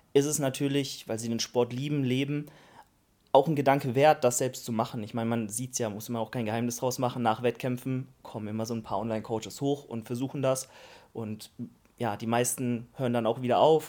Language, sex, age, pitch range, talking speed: German, male, 30-49, 115-135 Hz, 220 wpm